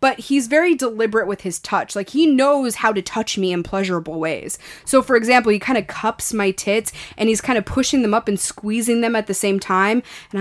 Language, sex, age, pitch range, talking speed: English, female, 20-39, 190-260 Hz, 235 wpm